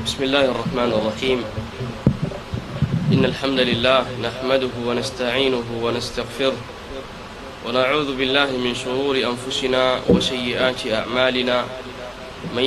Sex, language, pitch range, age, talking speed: male, Swahili, 125-135 Hz, 20-39, 85 wpm